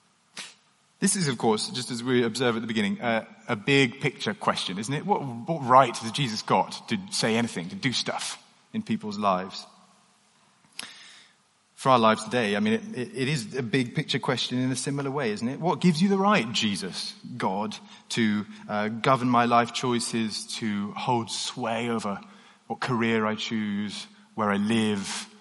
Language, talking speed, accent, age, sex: English, 180 wpm, British, 30-49, male